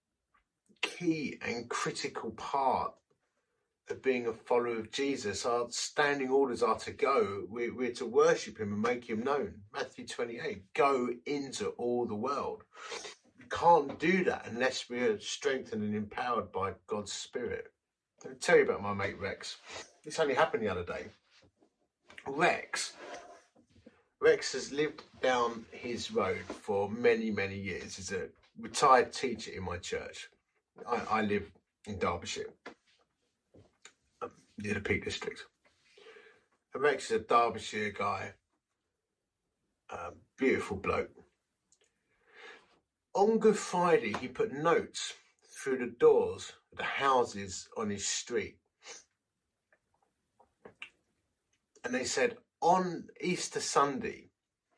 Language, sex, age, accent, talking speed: English, male, 30-49, British, 125 wpm